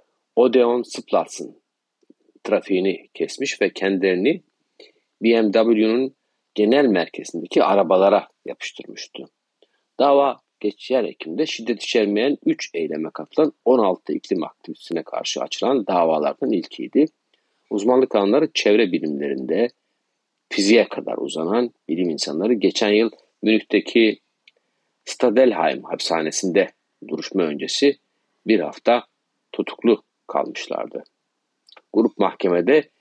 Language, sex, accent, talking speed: Turkish, male, native, 85 wpm